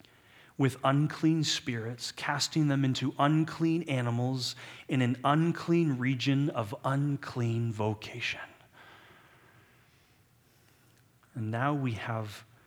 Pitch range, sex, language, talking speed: 115-155 Hz, male, English, 90 wpm